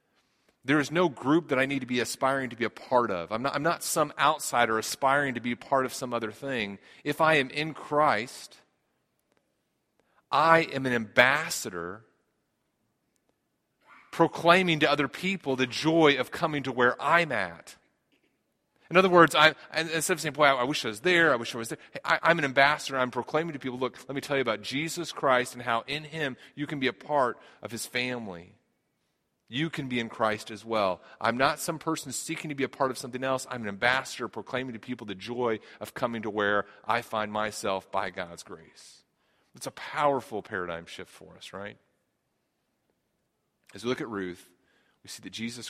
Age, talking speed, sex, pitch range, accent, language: 40-59, 200 wpm, male, 110-150 Hz, American, English